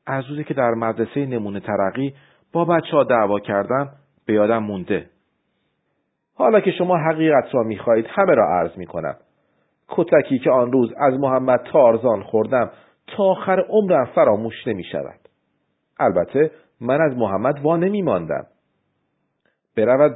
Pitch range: 120-180 Hz